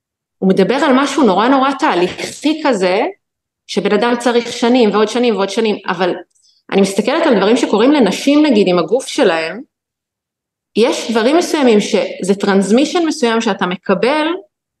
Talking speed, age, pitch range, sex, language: 140 wpm, 30-49, 195-265 Hz, female, Hebrew